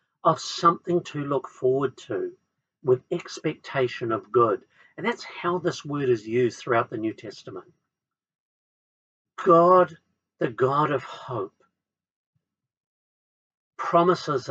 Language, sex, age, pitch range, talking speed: English, male, 50-69, 125-180 Hz, 110 wpm